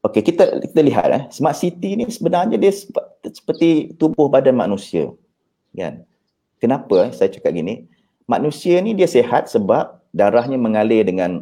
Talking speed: 150 wpm